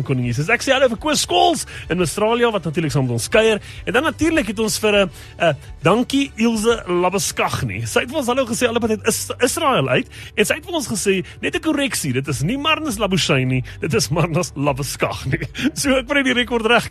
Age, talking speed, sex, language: 30-49, 225 wpm, male, English